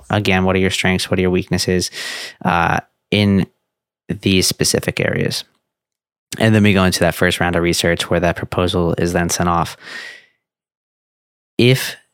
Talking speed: 160 wpm